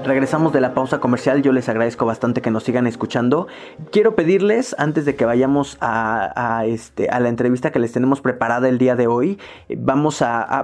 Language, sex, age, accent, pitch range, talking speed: Spanish, male, 20-39, Mexican, 125-155 Hz, 205 wpm